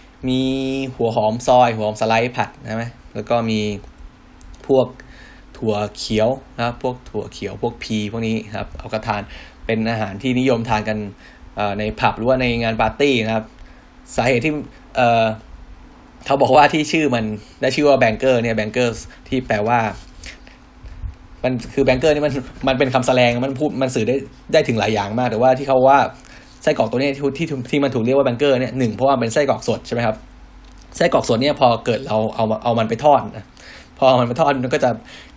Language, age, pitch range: Thai, 10-29, 110-130 Hz